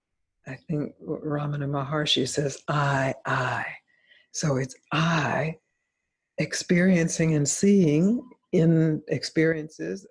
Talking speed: 90 wpm